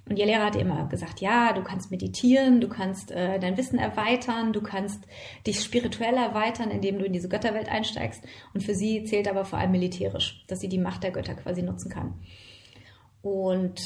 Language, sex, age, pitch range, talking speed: German, female, 30-49, 185-225 Hz, 195 wpm